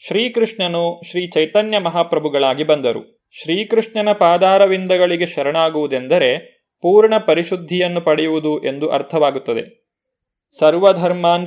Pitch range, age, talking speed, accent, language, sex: 155-210 Hz, 30-49, 75 wpm, native, Kannada, male